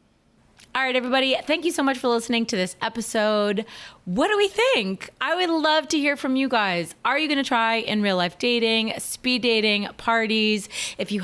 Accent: American